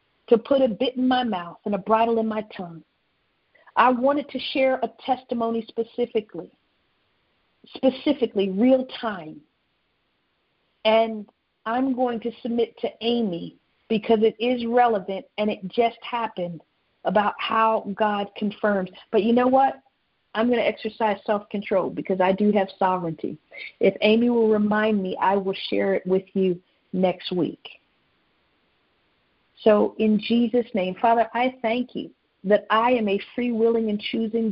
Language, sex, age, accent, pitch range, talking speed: English, female, 50-69, American, 195-235 Hz, 145 wpm